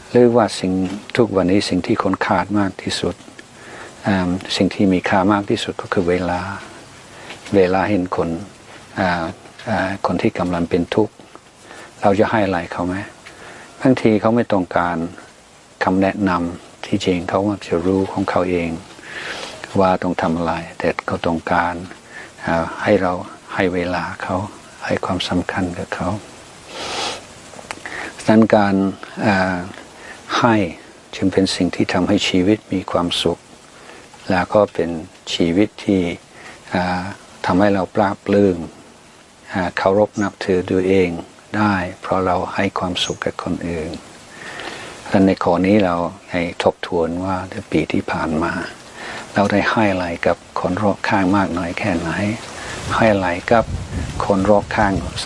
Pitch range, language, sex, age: 90-100 Hz, Thai, male, 60-79